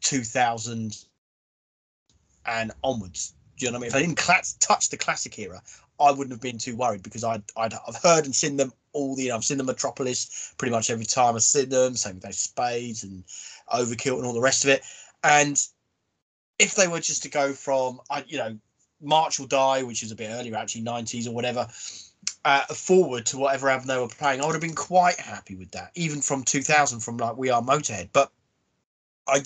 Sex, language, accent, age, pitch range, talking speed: male, English, British, 30-49, 115-145 Hz, 220 wpm